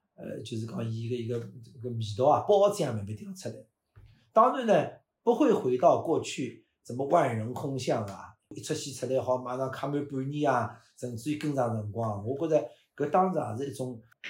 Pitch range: 115-140 Hz